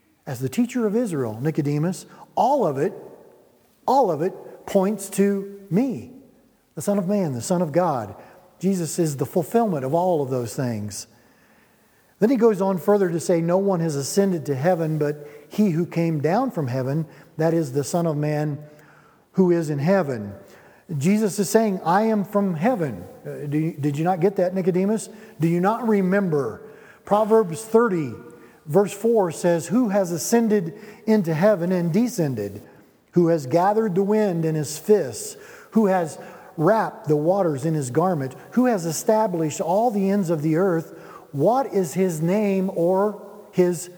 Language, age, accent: English, 50-69, American